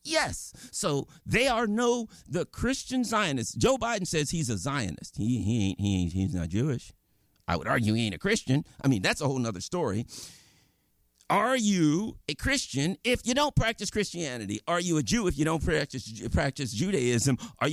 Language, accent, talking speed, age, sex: English, American, 190 wpm, 50-69, male